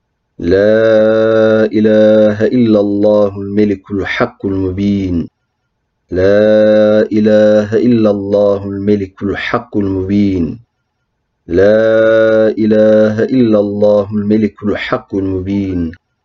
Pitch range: 105-115 Hz